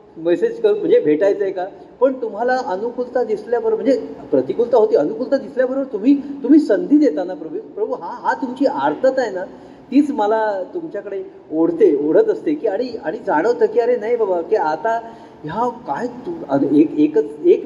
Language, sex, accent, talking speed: Marathi, male, native, 165 wpm